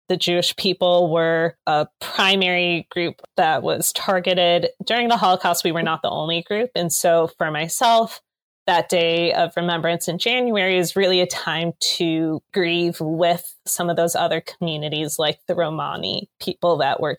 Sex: female